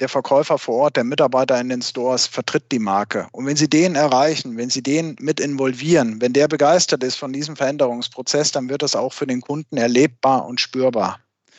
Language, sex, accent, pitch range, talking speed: German, male, German, 125-150 Hz, 200 wpm